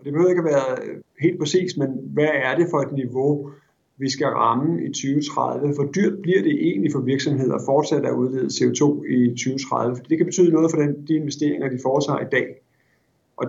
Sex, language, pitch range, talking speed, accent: male, Danish, 125-160 Hz, 200 wpm, native